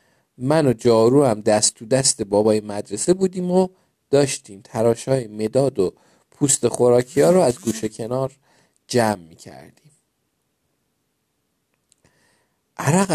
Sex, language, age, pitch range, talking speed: male, Persian, 50-69, 110-145 Hz, 115 wpm